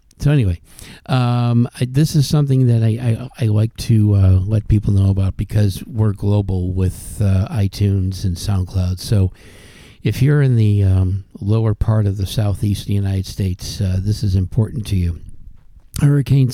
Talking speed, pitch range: 175 wpm, 95-115 Hz